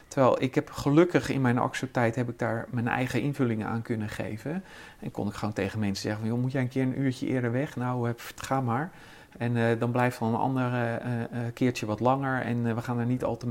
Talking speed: 255 wpm